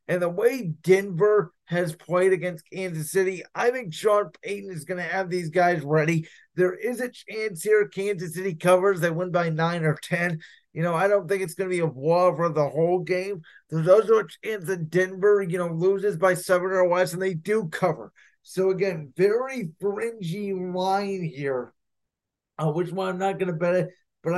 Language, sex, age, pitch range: English, male, 30-49, 165-195 Hz